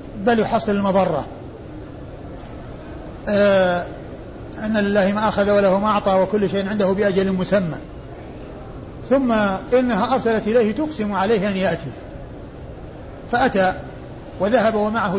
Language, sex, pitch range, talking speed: Arabic, male, 185-215 Hz, 105 wpm